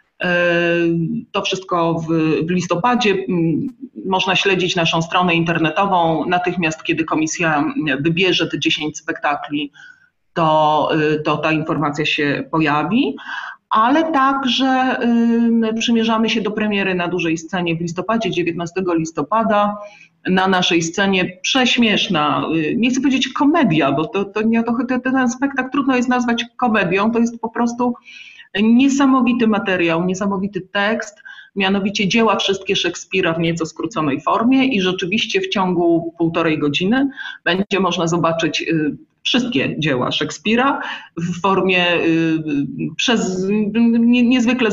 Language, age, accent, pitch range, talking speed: Polish, 40-59, native, 165-235 Hz, 115 wpm